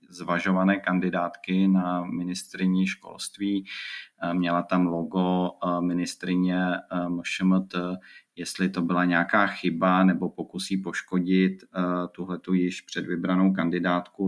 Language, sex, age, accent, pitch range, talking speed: Czech, male, 30-49, native, 90-95 Hz, 90 wpm